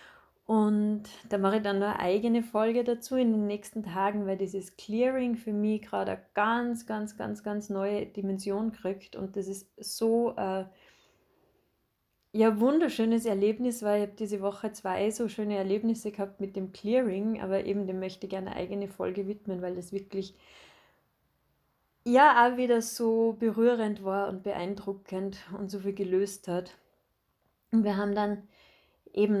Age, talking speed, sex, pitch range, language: 20-39, 165 wpm, female, 195-225 Hz, German